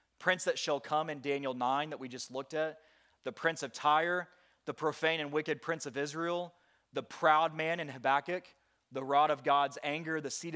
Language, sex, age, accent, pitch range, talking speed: English, male, 30-49, American, 125-145 Hz, 200 wpm